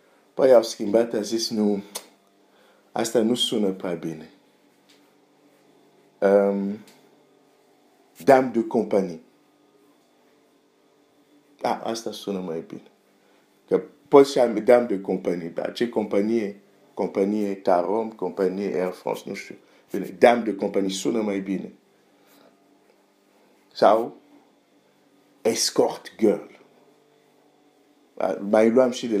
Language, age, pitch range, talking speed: Romanian, 50-69, 105-155 Hz, 105 wpm